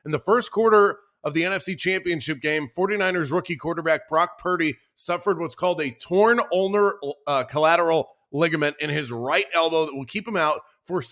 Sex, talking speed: male, 180 wpm